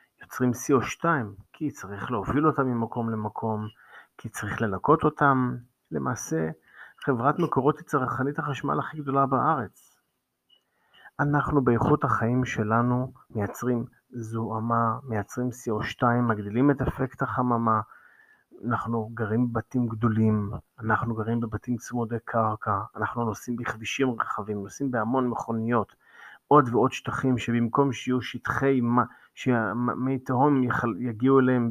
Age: 30-49